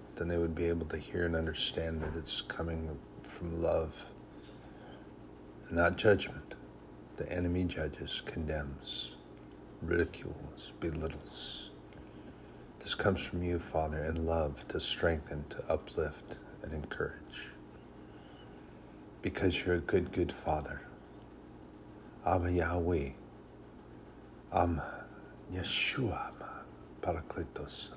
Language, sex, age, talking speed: English, male, 50-69, 100 wpm